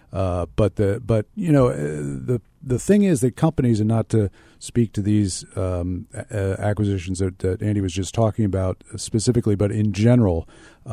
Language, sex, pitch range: English, male, 90-110 Hz